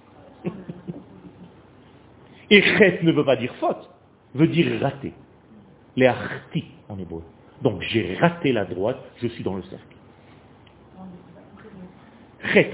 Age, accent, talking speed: 40-59, French, 115 wpm